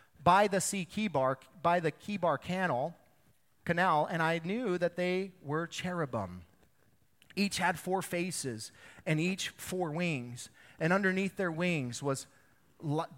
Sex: male